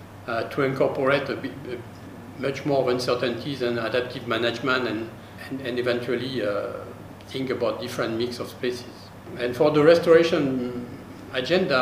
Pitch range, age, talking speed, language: 120-145 Hz, 50-69, 145 wpm, English